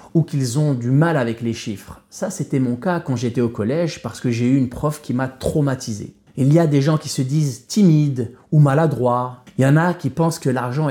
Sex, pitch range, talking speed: male, 110-145 Hz, 240 wpm